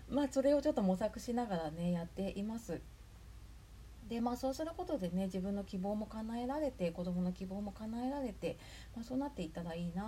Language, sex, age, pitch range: Japanese, female, 40-59, 165-215 Hz